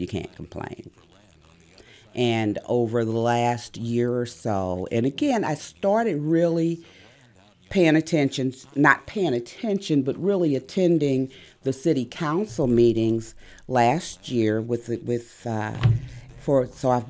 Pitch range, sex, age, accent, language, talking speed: 110-135 Hz, female, 40-59, American, English, 120 wpm